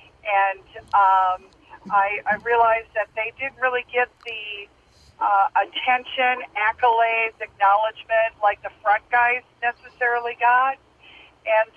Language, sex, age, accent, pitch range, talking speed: English, female, 50-69, American, 195-225 Hz, 110 wpm